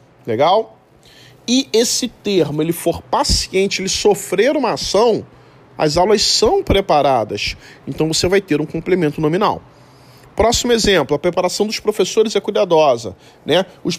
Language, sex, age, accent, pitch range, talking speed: Portuguese, male, 40-59, Brazilian, 155-225 Hz, 135 wpm